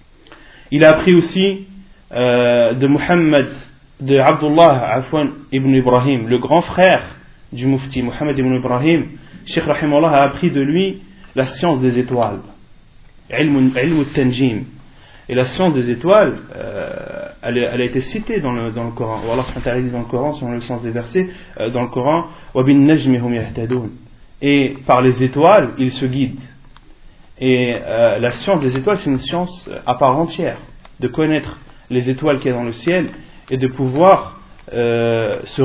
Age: 30-49